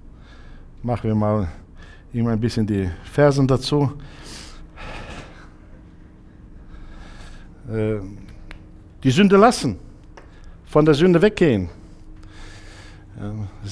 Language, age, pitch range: German, 60-79, 105-155 Hz